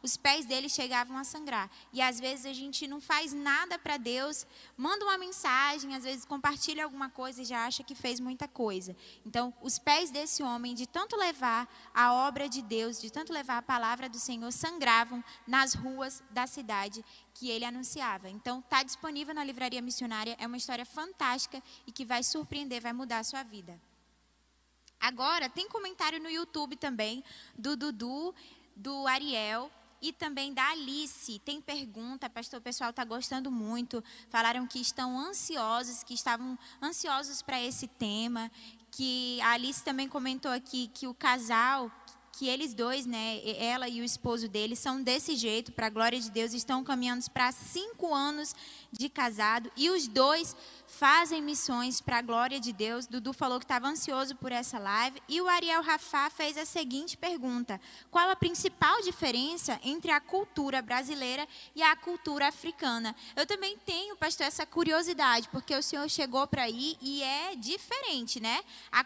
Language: Portuguese